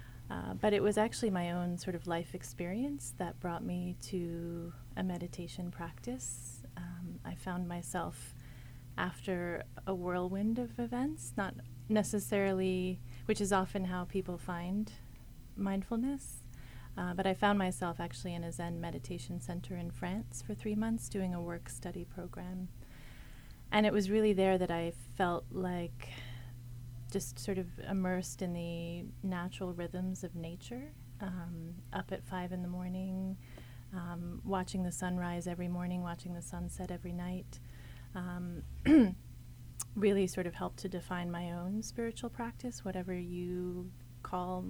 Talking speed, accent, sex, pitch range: 145 wpm, American, female, 125-185 Hz